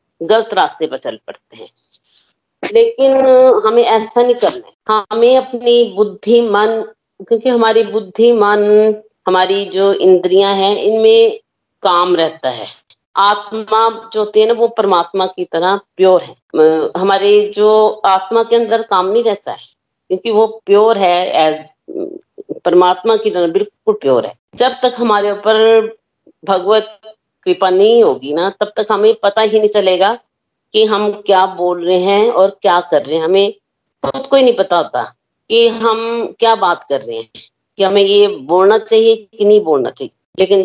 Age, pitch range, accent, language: 50-69, 190-225 Hz, native, Hindi